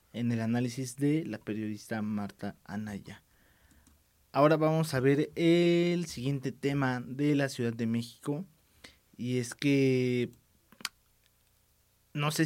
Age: 20-39